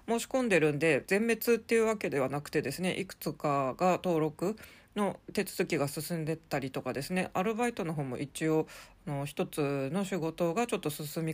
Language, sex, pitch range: Japanese, female, 150-205 Hz